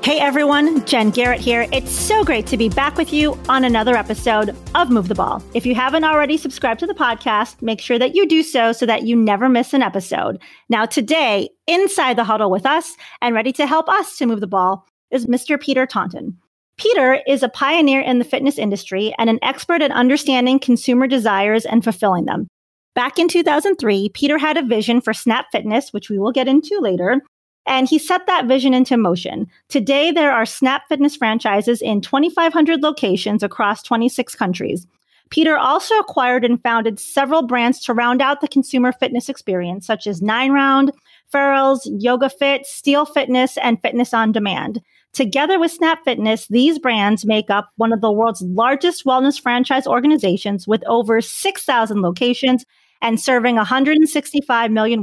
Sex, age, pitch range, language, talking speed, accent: female, 30-49, 225-285 Hz, English, 180 wpm, American